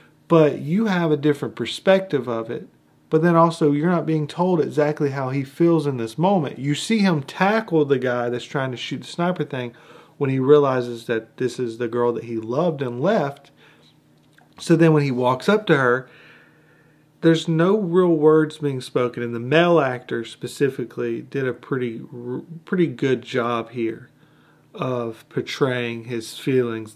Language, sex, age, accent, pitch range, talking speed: English, male, 40-59, American, 120-155 Hz, 175 wpm